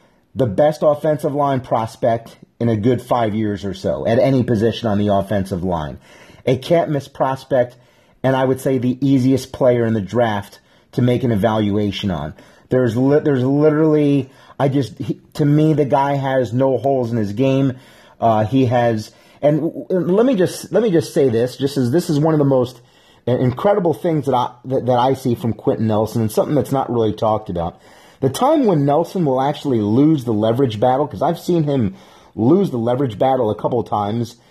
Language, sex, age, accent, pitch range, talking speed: English, male, 30-49, American, 115-140 Hz, 200 wpm